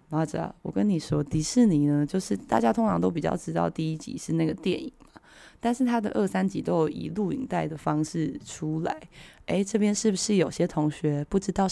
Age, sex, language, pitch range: 20-39, female, Chinese, 155-225 Hz